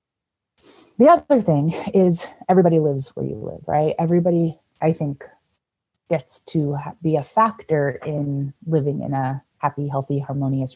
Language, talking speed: English, 140 wpm